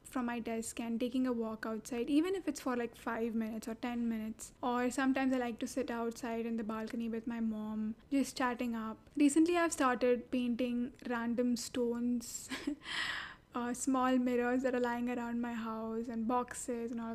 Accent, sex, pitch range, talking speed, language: Indian, female, 235-265 Hz, 185 wpm, English